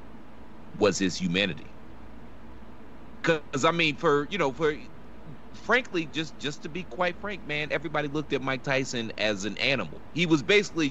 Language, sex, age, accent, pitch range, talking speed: English, male, 30-49, American, 100-150 Hz, 160 wpm